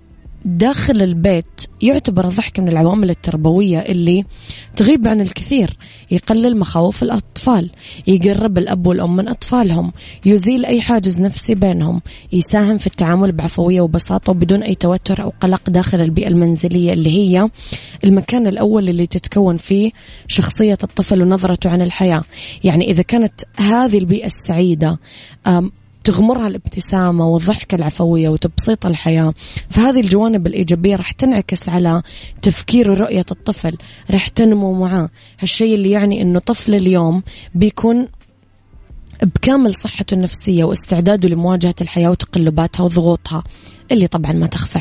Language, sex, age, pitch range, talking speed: Arabic, female, 20-39, 170-205 Hz, 125 wpm